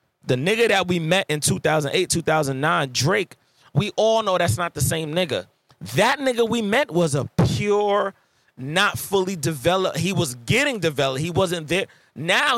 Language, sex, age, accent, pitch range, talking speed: English, male, 30-49, American, 135-190 Hz, 165 wpm